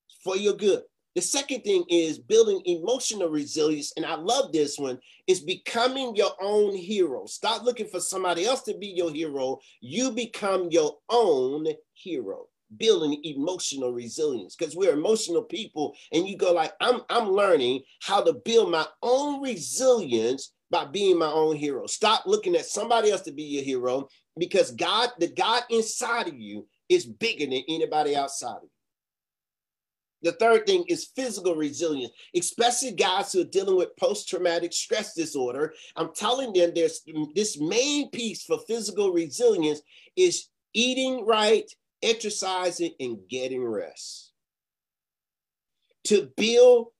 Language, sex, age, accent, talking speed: English, male, 40-59, American, 150 wpm